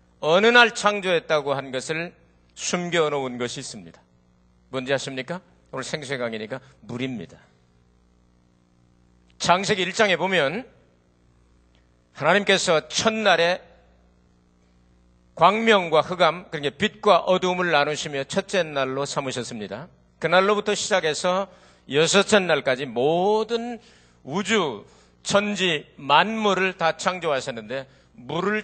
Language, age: Korean, 40-59